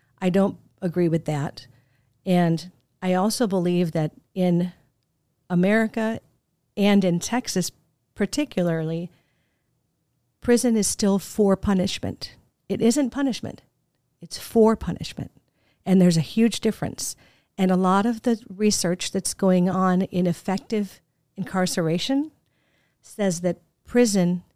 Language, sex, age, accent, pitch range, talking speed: English, female, 50-69, American, 165-200 Hz, 115 wpm